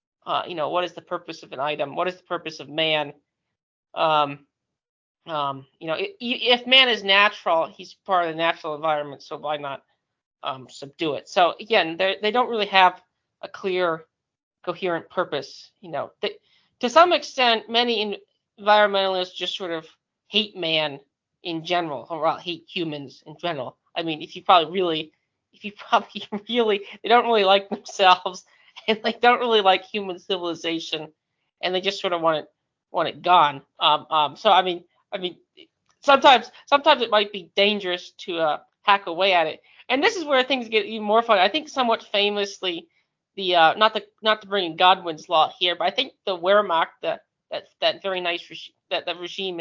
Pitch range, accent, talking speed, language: 165-210 Hz, American, 190 wpm, English